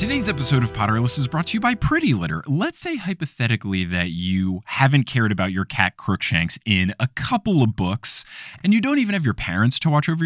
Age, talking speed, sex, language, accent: 20-39, 220 wpm, male, English, American